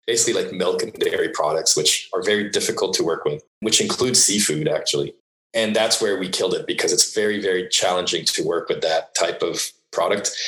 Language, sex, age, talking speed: English, male, 30-49, 200 wpm